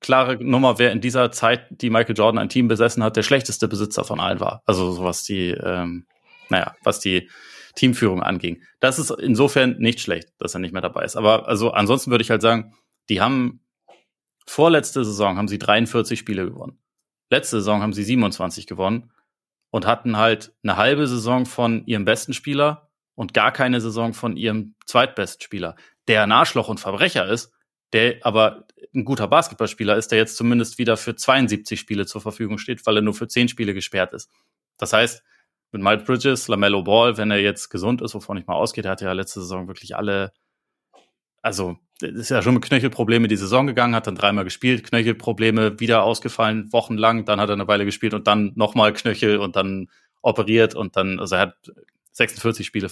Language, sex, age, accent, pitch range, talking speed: German, male, 30-49, German, 105-120 Hz, 190 wpm